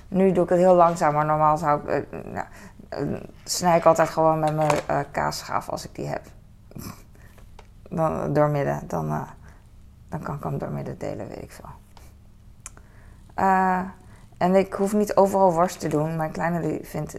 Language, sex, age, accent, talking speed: Dutch, female, 20-39, Dutch, 170 wpm